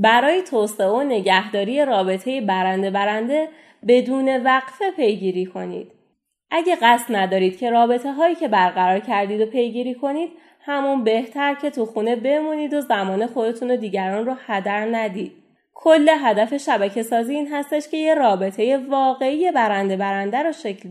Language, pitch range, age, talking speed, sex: Persian, 200-270 Hz, 30-49, 145 wpm, female